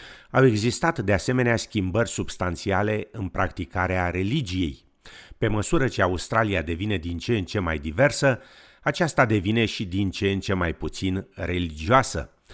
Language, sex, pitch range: Romanian, male, 90-115 Hz